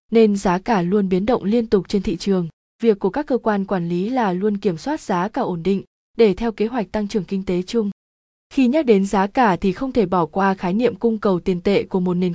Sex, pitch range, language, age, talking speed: female, 190-230 Hz, Vietnamese, 20-39, 260 wpm